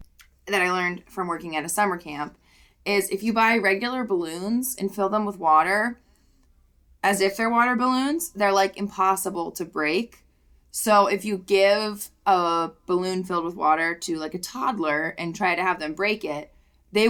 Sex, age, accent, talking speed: female, 20-39, American, 180 wpm